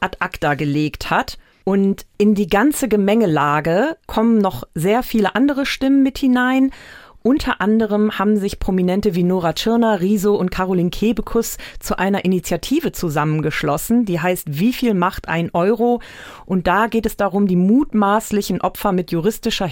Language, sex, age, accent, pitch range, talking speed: German, female, 40-59, German, 175-225 Hz, 150 wpm